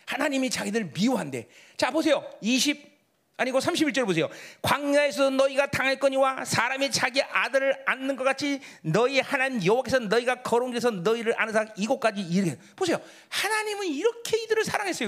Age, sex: 40-59, male